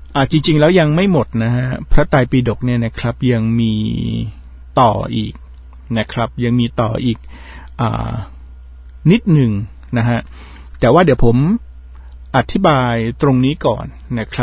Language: Thai